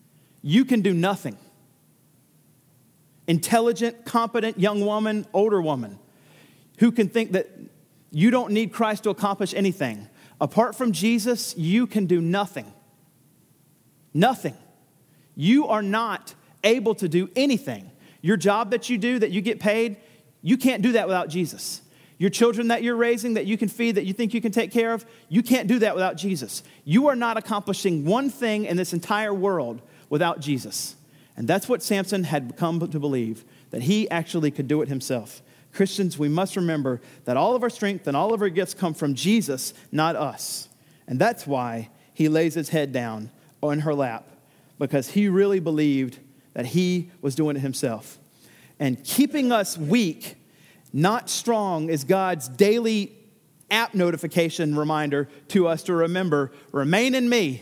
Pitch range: 150-220 Hz